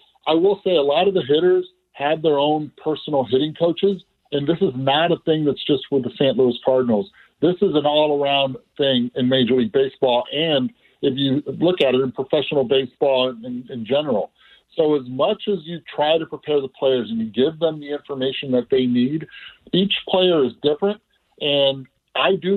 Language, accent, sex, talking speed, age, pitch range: English, American, male, 195 wpm, 50-69, 130-170 Hz